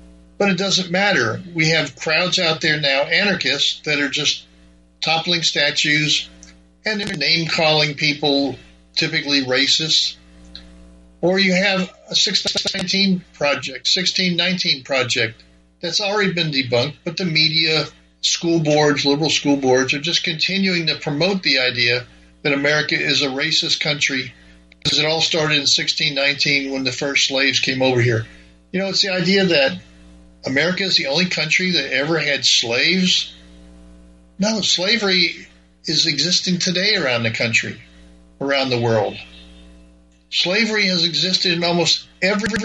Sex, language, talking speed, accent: male, English, 140 wpm, American